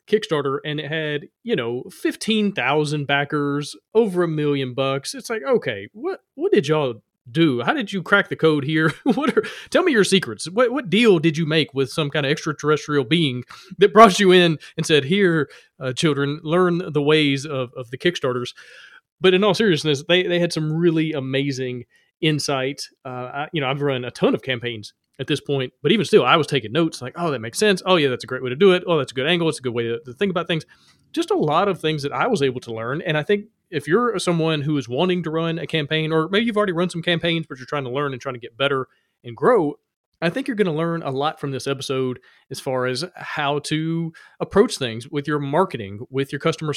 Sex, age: male, 30-49